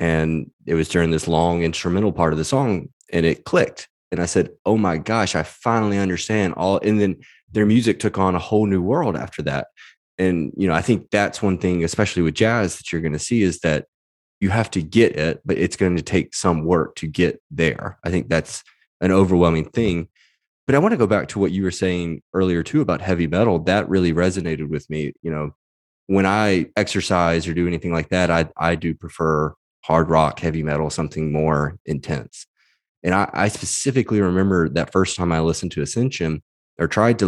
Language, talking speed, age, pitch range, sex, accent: English, 210 wpm, 20-39, 80-95 Hz, male, American